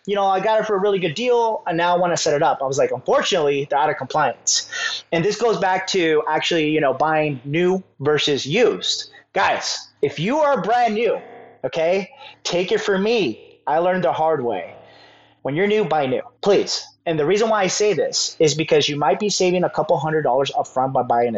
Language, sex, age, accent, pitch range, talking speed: English, male, 30-49, American, 135-190 Hz, 225 wpm